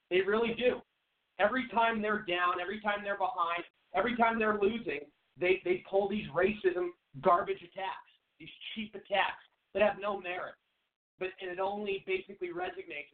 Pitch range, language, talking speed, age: 155-190 Hz, English, 160 wpm, 40-59